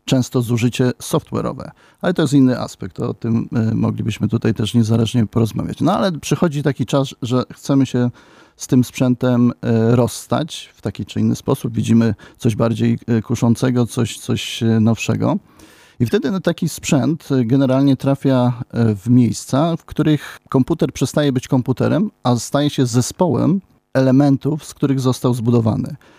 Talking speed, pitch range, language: 140 wpm, 115-140 Hz, Polish